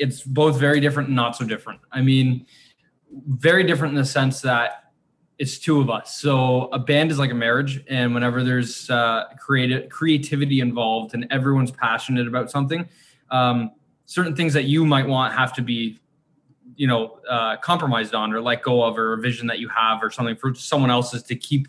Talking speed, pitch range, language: 195 wpm, 120-145 Hz, English